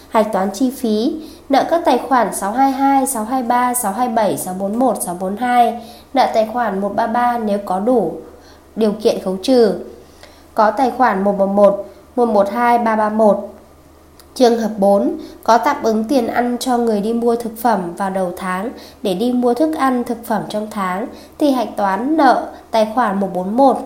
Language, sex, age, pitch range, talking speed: Vietnamese, female, 20-39, 200-255 Hz, 160 wpm